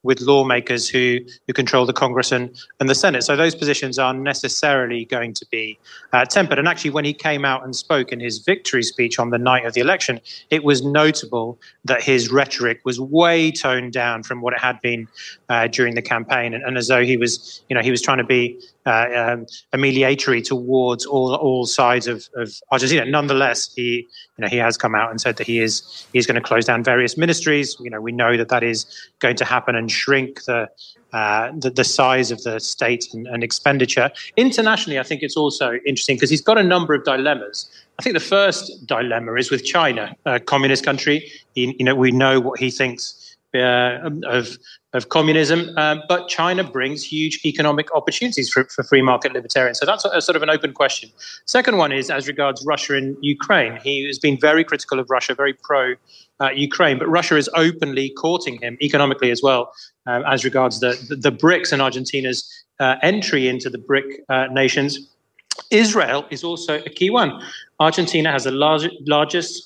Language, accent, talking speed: English, British, 205 wpm